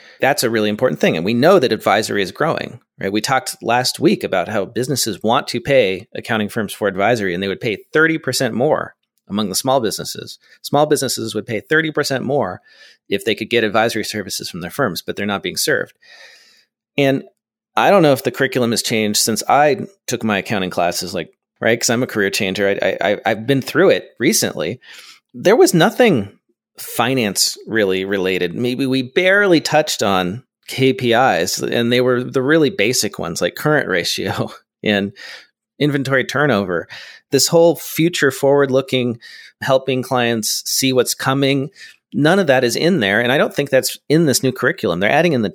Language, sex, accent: English, male, American